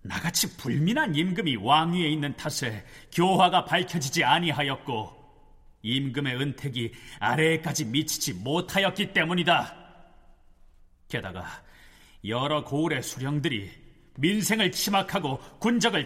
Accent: native